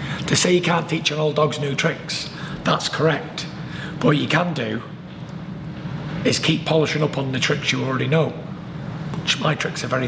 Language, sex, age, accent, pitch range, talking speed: English, male, 40-59, British, 155-170 Hz, 190 wpm